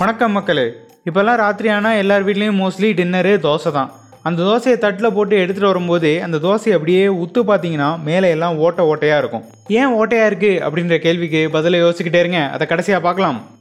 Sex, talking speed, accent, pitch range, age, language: male, 170 wpm, native, 155-205 Hz, 20-39, Tamil